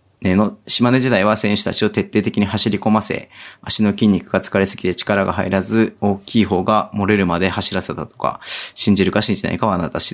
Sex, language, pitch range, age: male, Japanese, 95-110 Hz, 30-49